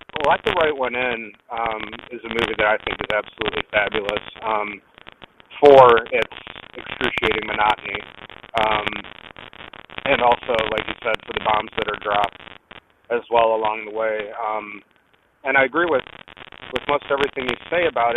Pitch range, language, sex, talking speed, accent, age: 110-125 Hz, English, male, 160 wpm, American, 30-49